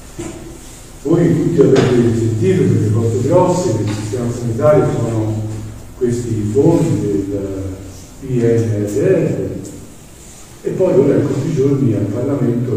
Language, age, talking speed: Italian, 50-69, 115 wpm